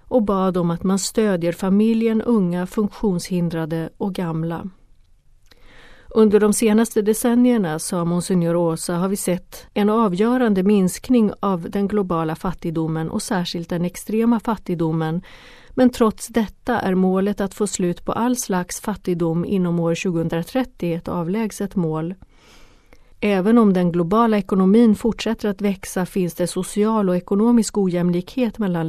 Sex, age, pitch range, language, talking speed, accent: female, 40-59, 170-215 Hz, Swedish, 135 wpm, native